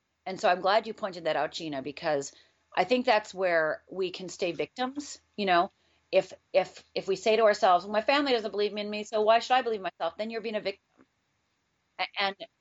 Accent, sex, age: American, female, 40-59